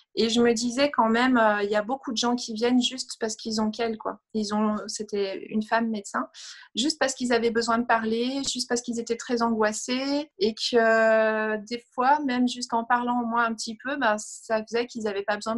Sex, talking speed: female, 235 wpm